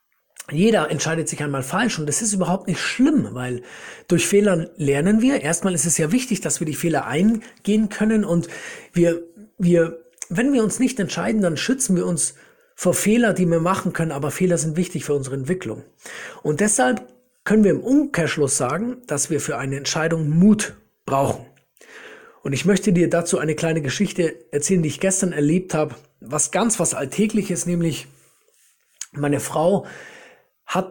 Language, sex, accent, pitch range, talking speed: German, male, German, 150-205 Hz, 170 wpm